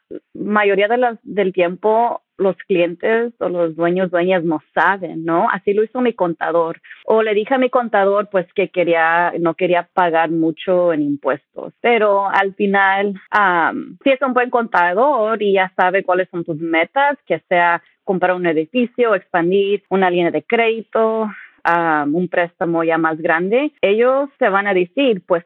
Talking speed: 170 wpm